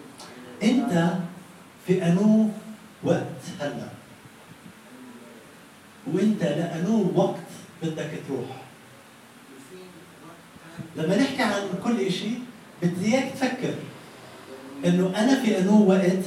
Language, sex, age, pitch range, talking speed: Arabic, male, 40-59, 140-190 Hz, 85 wpm